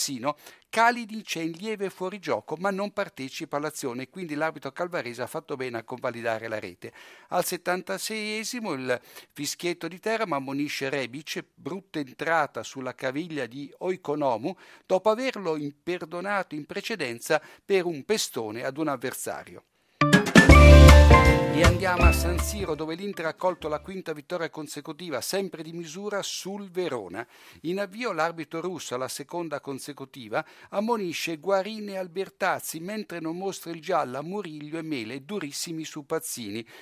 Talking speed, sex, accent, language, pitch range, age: 140 wpm, male, native, Italian, 140-185 Hz, 60-79